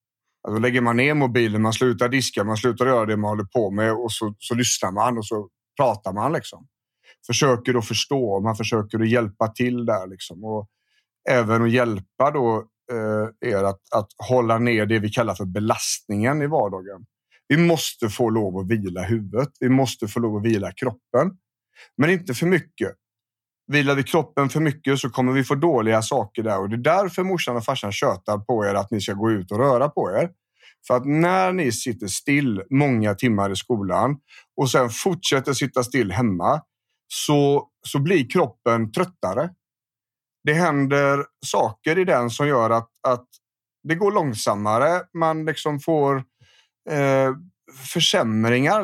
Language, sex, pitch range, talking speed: Swedish, male, 110-140 Hz, 175 wpm